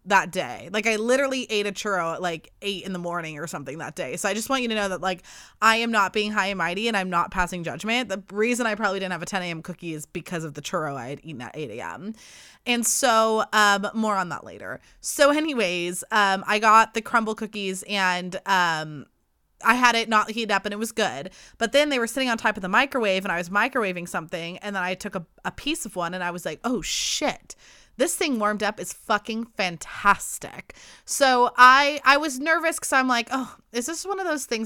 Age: 20-39